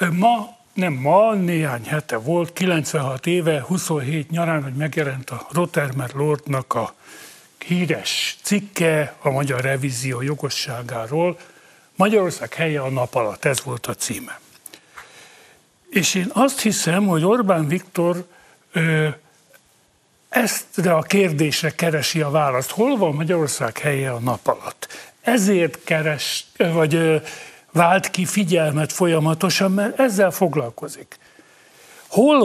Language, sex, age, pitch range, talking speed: Hungarian, male, 60-79, 145-185 Hz, 115 wpm